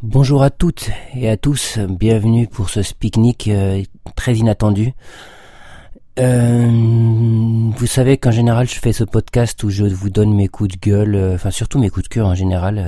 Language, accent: English, French